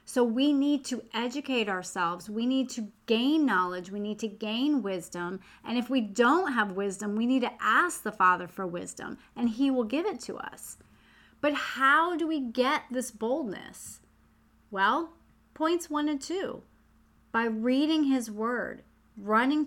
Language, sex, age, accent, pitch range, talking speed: English, female, 30-49, American, 210-275 Hz, 165 wpm